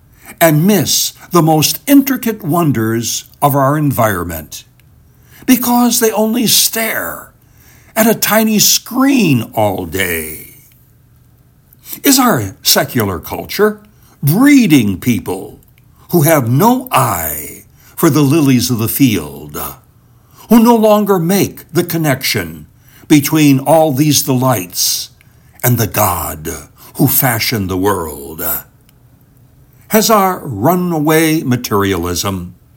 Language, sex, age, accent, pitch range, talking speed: English, male, 60-79, American, 110-160 Hz, 105 wpm